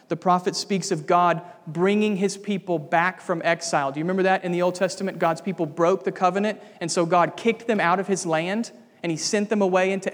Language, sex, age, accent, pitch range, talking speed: English, male, 40-59, American, 180-225 Hz, 230 wpm